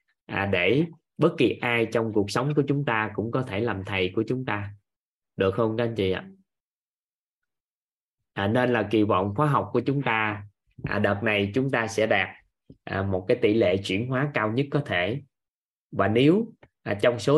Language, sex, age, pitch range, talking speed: Vietnamese, male, 20-39, 100-135 Hz, 185 wpm